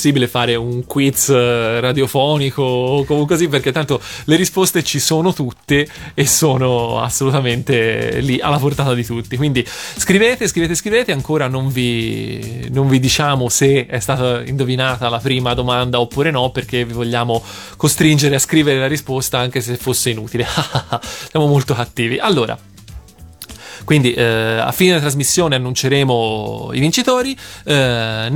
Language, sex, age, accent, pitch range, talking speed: Italian, male, 20-39, native, 120-150 Hz, 140 wpm